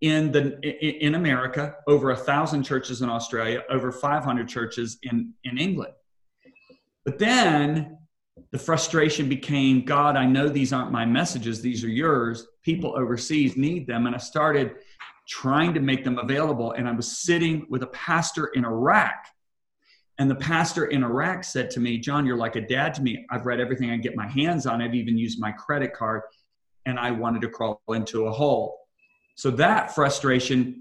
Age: 40-59